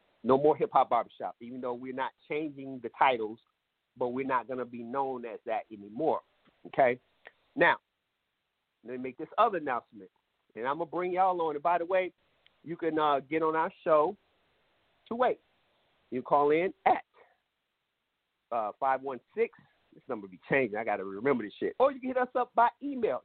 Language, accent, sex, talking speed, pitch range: English, American, male, 195 wpm, 145-235 Hz